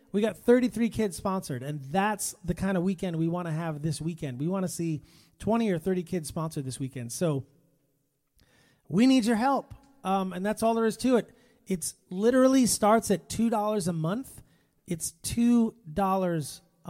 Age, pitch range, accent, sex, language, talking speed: 30-49, 160-205 Hz, American, male, English, 180 wpm